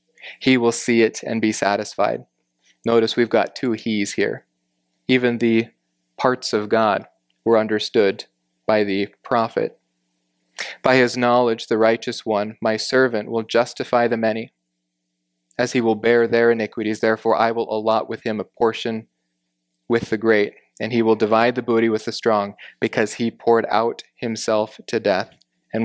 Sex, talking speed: male, 160 wpm